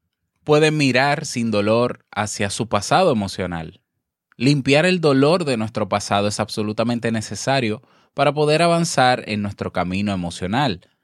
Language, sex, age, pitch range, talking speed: Spanish, male, 20-39, 105-145 Hz, 130 wpm